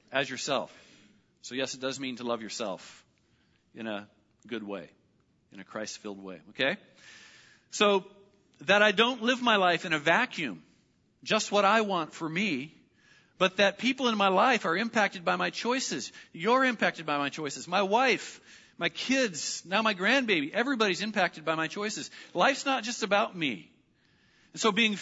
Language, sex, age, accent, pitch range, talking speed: English, male, 40-59, American, 150-215 Hz, 170 wpm